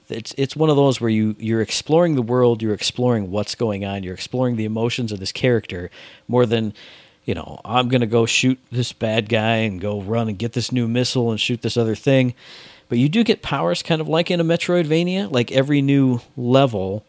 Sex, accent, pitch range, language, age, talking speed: male, American, 110-140 Hz, English, 40-59, 220 wpm